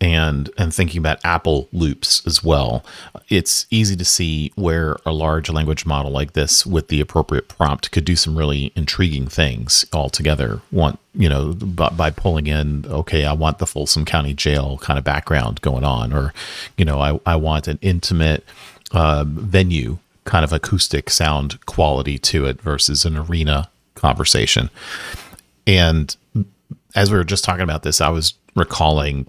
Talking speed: 165 wpm